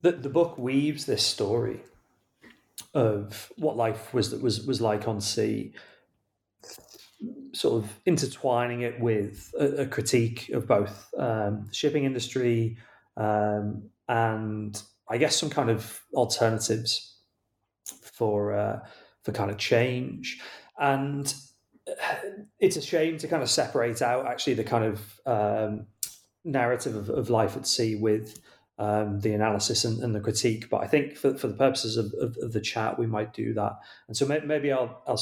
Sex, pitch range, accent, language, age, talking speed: male, 105-125 Hz, British, English, 30-49, 160 wpm